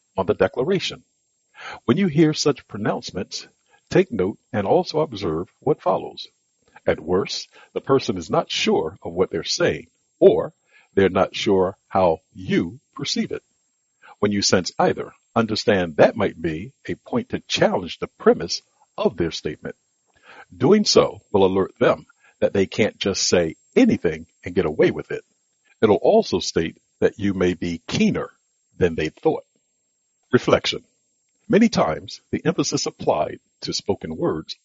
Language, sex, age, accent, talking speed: English, male, 60-79, American, 150 wpm